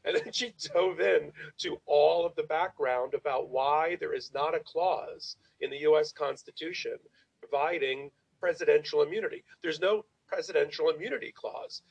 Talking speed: 145 wpm